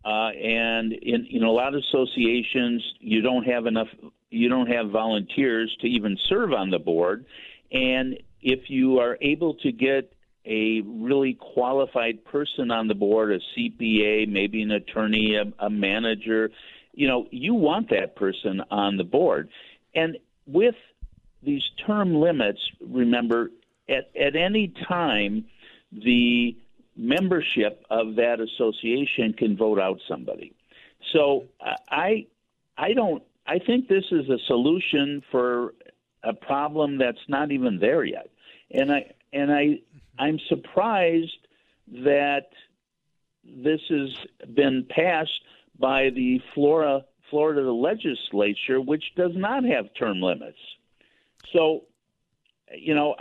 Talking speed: 130 wpm